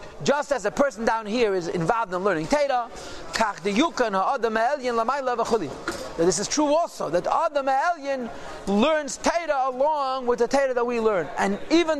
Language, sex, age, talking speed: English, male, 40-59, 140 wpm